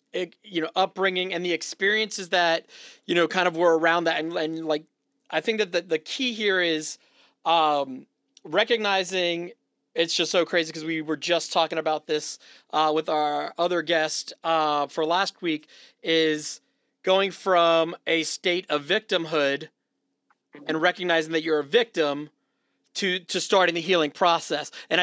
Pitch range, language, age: 155-185 Hz, English, 30-49